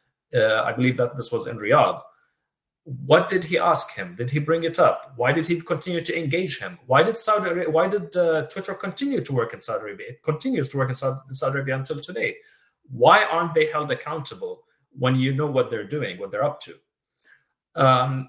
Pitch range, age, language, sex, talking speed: 130-175 Hz, 30-49, English, male, 205 wpm